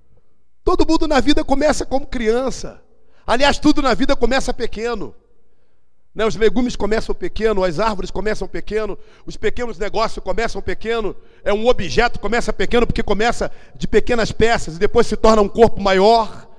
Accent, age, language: Brazilian, 50-69, Portuguese